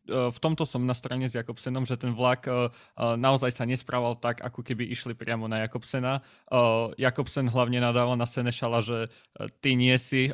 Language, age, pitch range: Slovak, 20-39, 115-130 Hz